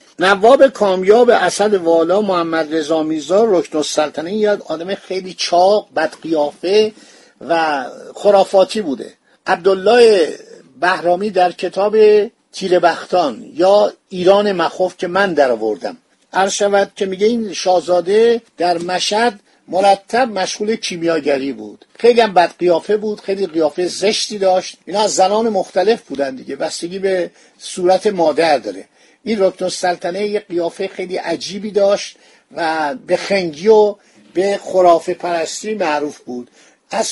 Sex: male